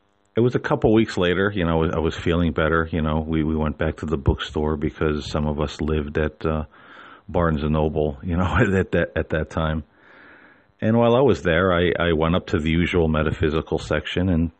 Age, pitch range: 40-59, 80-100 Hz